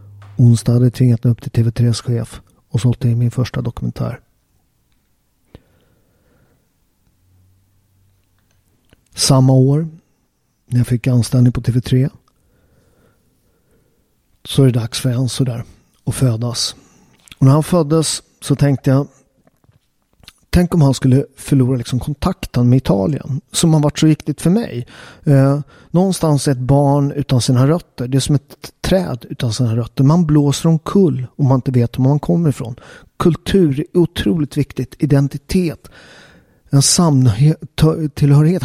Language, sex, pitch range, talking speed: Swedish, male, 125-155 Hz, 145 wpm